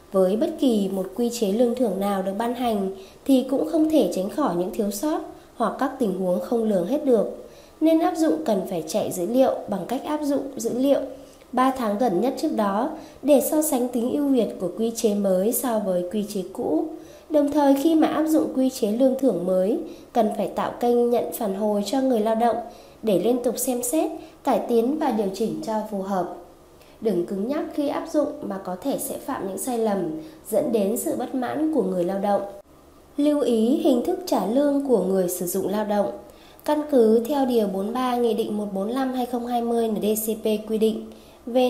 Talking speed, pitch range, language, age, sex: 210 wpm, 210-275 Hz, Vietnamese, 20-39, female